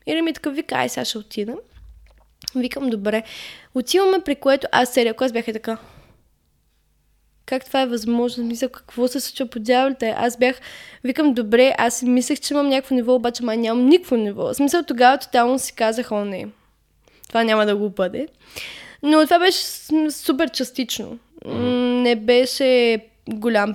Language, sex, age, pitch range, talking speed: Bulgarian, female, 10-29, 230-275 Hz, 165 wpm